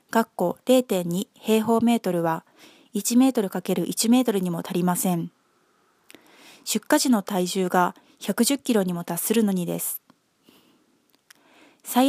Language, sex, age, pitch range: Japanese, female, 20-39, 190-260 Hz